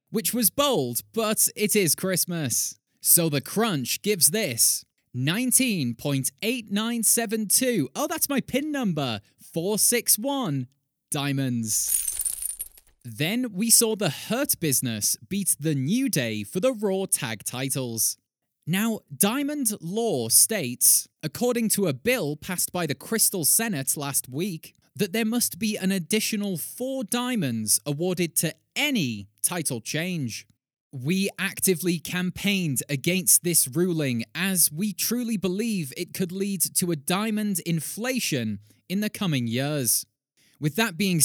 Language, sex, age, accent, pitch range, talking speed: English, male, 20-39, British, 130-215 Hz, 125 wpm